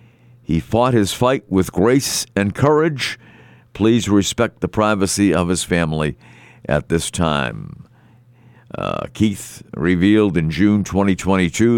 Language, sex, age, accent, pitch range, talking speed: English, male, 50-69, American, 95-120 Hz, 120 wpm